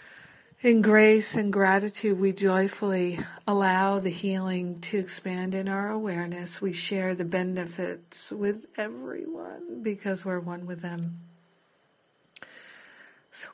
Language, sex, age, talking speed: English, female, 50-69, 115 wpm